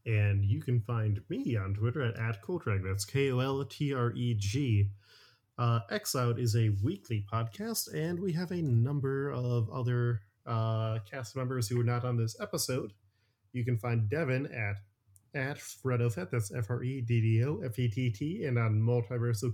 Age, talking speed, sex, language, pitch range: 20-39, 140 wpm, male, English, 110-130 Hz